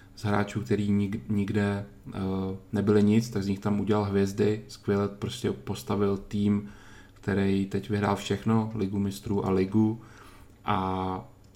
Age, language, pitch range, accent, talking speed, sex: 20-39, Czech, 100-110 Hz, native, 125 wpm, male